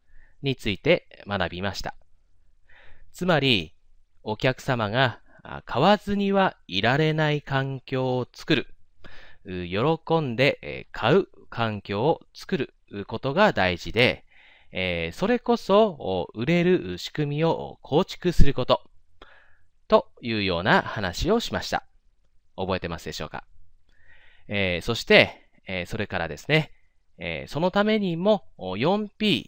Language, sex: Japanese, male